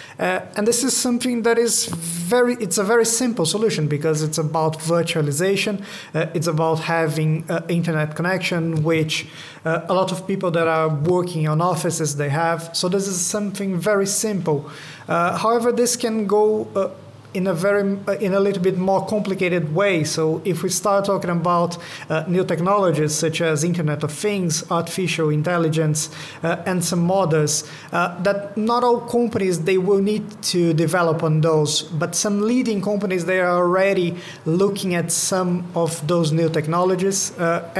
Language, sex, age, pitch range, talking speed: English, male, 30-49, 165-200 Hz, 170 wpm